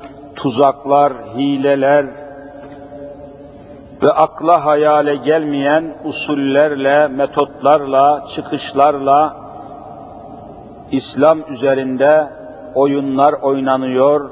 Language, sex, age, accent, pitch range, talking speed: Turkish, male, 50-69, native, 140-170 Hz, 55 wpm